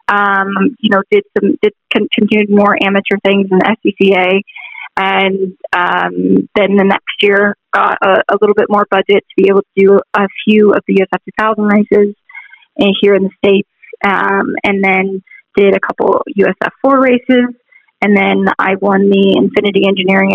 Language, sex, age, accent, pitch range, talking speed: English, female, 20-39, American, 190-210 Hz, 170 wpm